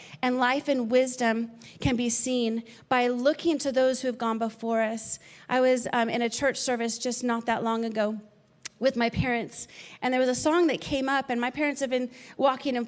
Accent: American